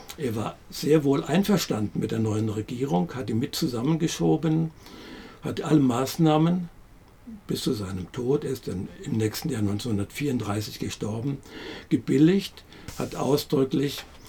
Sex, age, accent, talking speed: male, 60-79, German, 130 wpm